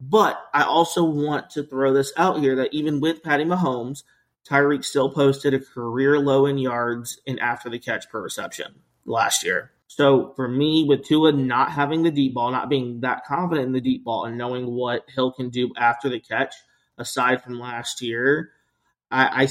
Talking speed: 195 wpm